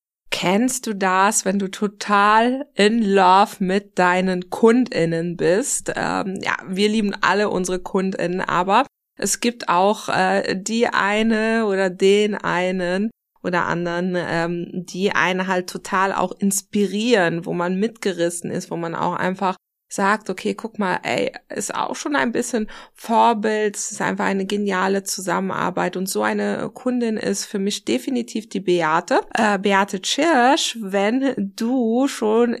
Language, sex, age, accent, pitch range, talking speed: German, female, 20-39, German, 190-220 Hz, 145 wpm